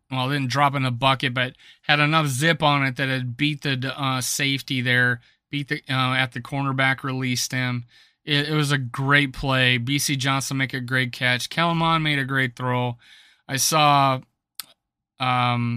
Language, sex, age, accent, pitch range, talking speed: English, male, 30-49, American, 130-150 Hz, 180 wpm